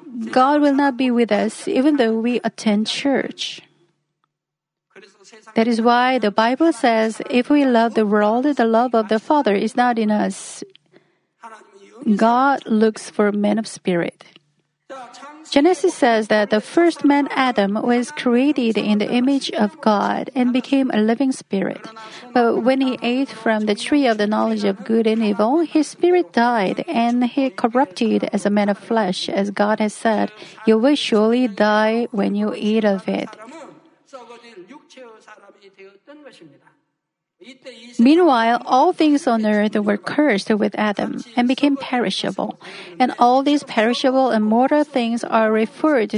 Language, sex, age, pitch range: Korean, female, 40-59, 215-265 Hz